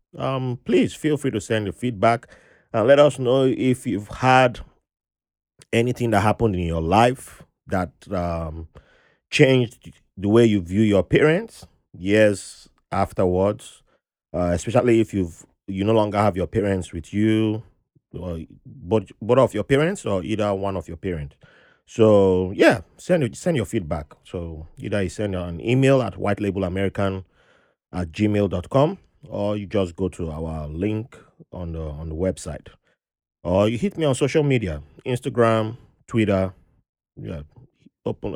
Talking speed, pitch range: 150 wpm, 90-120 Hz